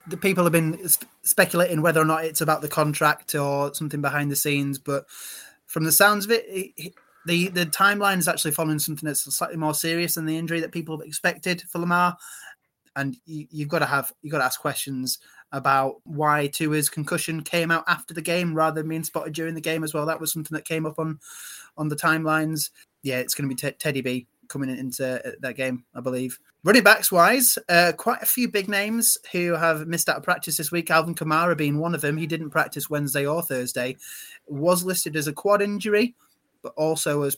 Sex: male